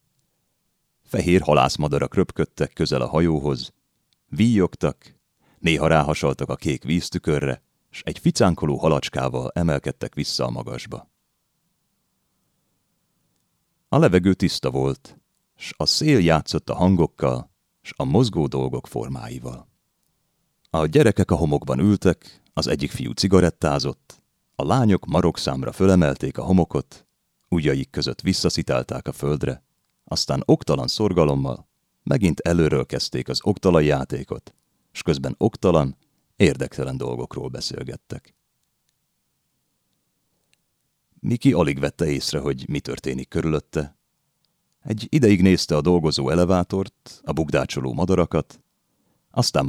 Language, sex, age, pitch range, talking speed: Hungarian, male, 30-49, 70-95 Hz, 105 wpm